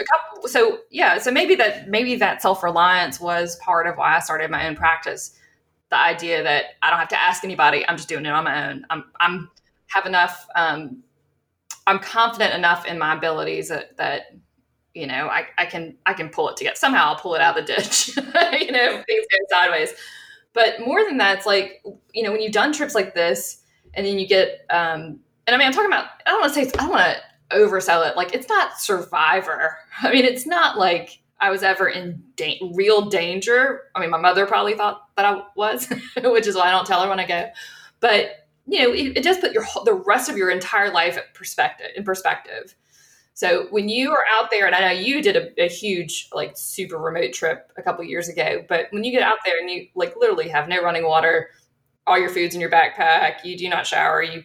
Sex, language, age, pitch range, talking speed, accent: female, English, 20-39, 175-255 Hz, 225 wpm, American